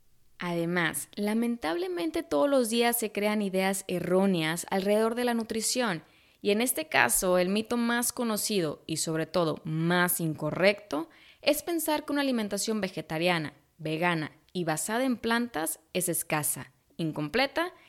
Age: 20-39